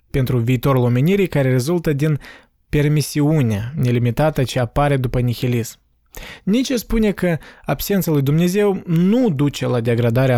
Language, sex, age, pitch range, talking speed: Romanian, male, 20-39, 125-155 Hz, 125 wpm